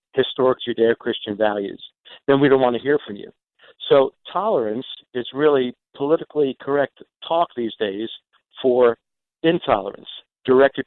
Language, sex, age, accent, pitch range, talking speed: English, male, 50-69, American, 115-145 Hz, 125 wpm